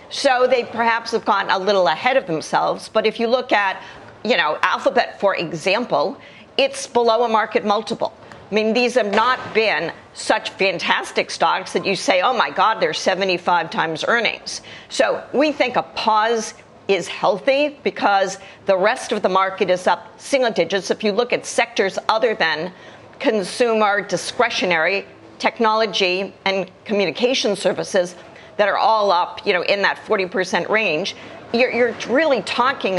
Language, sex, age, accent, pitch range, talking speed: English, female, 50-69, American, 190-230 Hz, 160 wpm